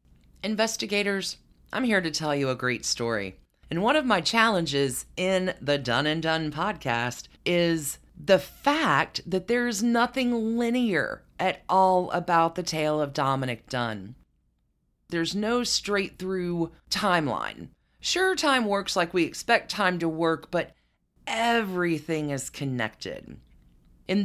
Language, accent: English, American